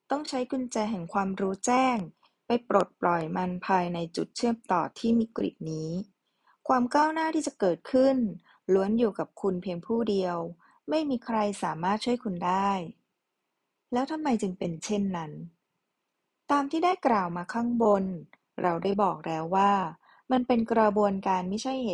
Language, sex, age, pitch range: Thai, female, 20-39, 180-235 Hz